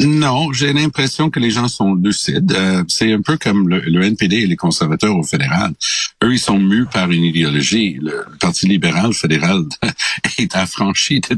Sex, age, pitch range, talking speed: male, 60-79, 80-100 Hz, 190 wpm